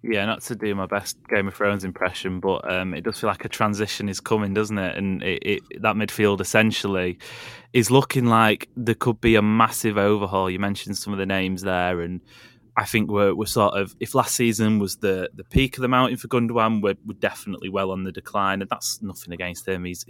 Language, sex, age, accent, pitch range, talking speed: English, male, 20-39, British, 100-125 Hz, 220 wpm